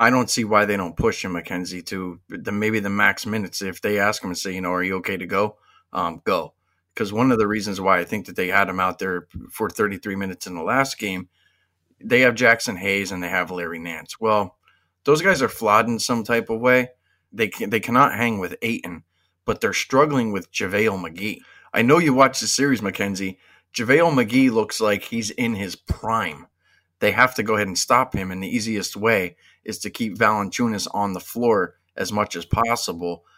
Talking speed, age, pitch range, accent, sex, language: 220 wpm, 30-49, 90-120 Hz, American, male, English